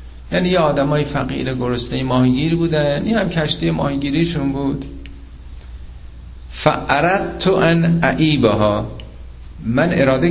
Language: Persian